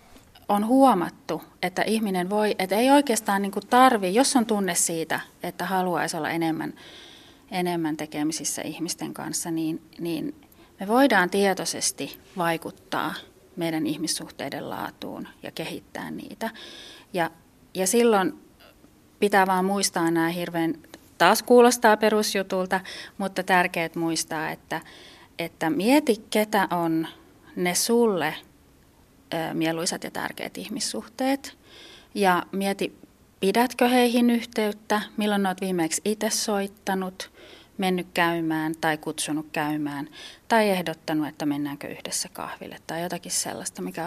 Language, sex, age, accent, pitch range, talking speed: Finnish, female, 30-49, native, 165-215 Hz, 115 wpm